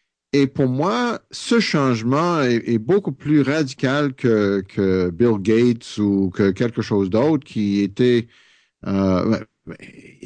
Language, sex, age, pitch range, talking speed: English, male, 50-69, 115-155 Hz, 130 wpm